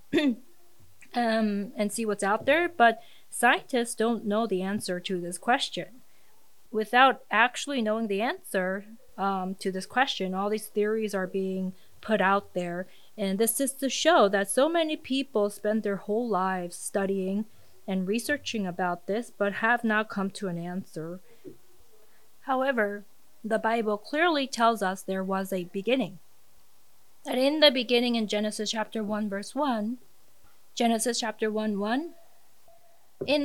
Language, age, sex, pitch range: English, 30-49, female, 200-255 Hz